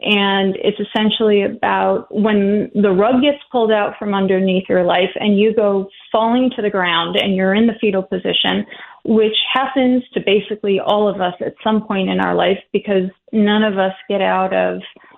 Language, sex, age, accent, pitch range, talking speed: English, female, 30-49, American, 195-225 Hz, 185 wpm